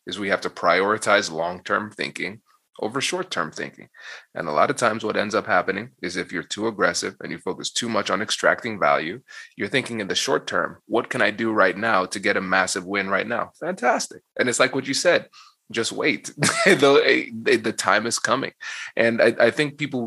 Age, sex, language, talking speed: 20-39, male, English, 210 wpm